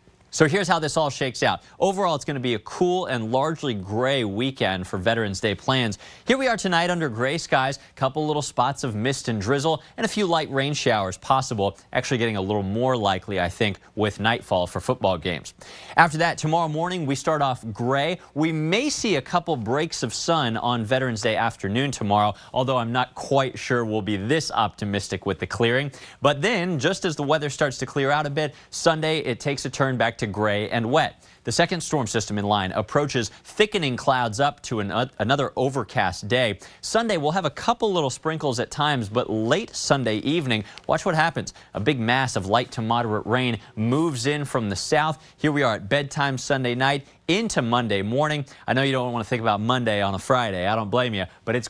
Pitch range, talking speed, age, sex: 110-150 Hz, 215 wpm, 20-39, male